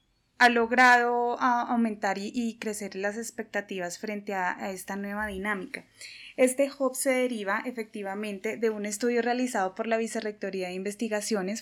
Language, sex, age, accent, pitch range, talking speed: Spanish, female, 20-39, Colombian, 205-250 Hz, 150 wpm